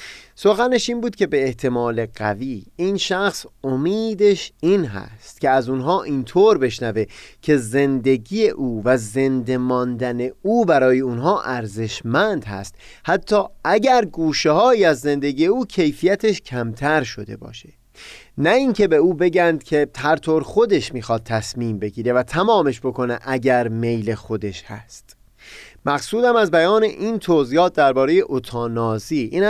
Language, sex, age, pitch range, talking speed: Persian, male, 30-49, 115-175 Hz, 130 wpm